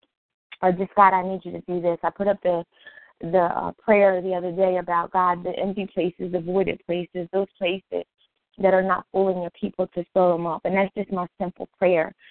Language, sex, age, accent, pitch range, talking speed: English, female, 20-39, American, 180-205 Hz, 220 wpm